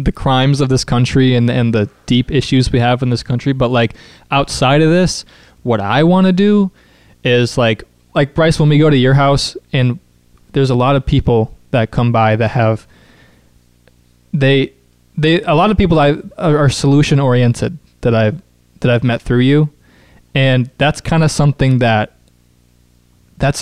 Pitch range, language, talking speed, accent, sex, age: 115-140 Hz, English, 180 wpm, American, male, 20-39